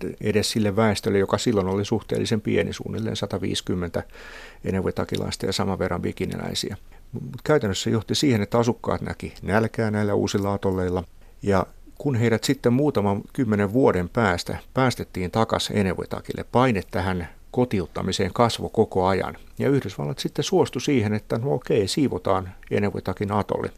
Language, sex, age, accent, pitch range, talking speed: Finnish, male, 60-79, native, 95-115 Hz, 135 wpm